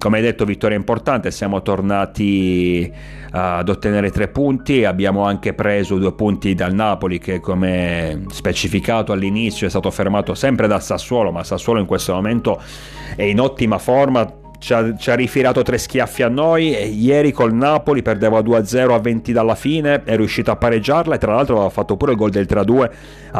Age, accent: 40-59, native